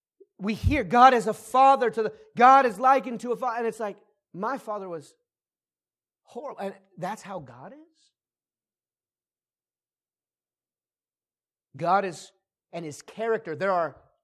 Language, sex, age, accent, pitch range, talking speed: English, male, 30-49, American, 155-225 Hz, 140 wpm